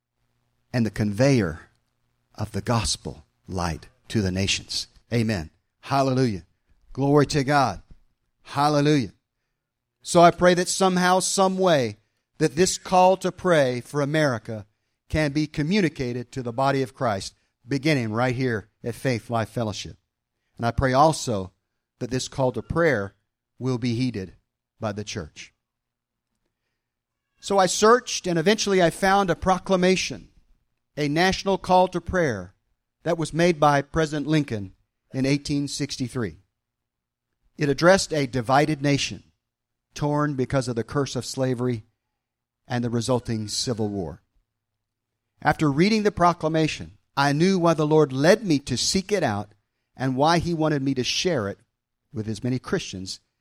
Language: English